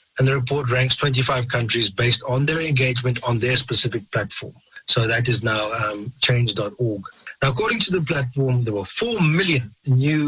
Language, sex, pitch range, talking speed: English, male, 125-155 Hz, 175 wpm